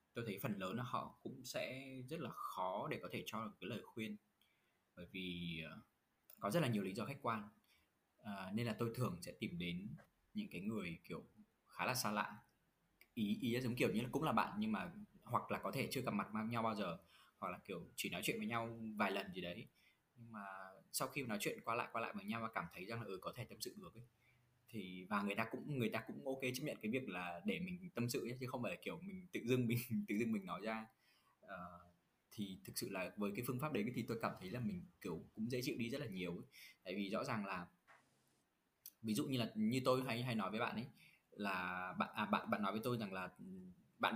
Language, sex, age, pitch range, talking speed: Vietnamese, male, 20-39, 100-140 Hz, 255 wpm